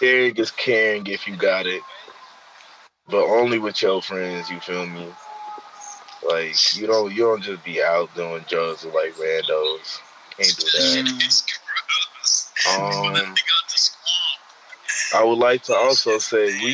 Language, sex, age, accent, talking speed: English, male, 20-39, American, 140 wpm